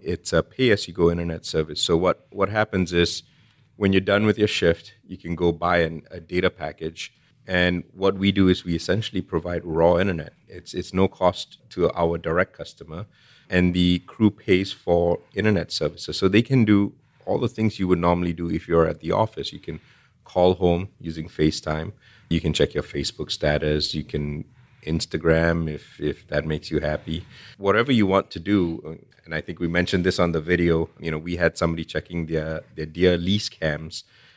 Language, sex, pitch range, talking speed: English, male, 80-95 Hz, 195 wpm